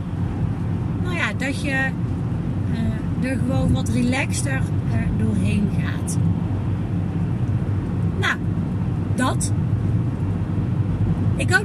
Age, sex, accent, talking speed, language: 30-49, female, Dutch, 60 wpm, Dutch